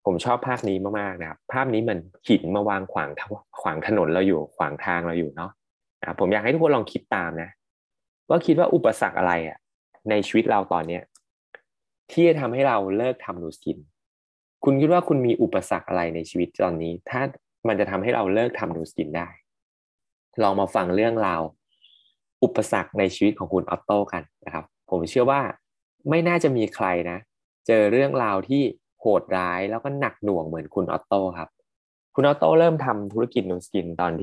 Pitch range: 90-120 Hz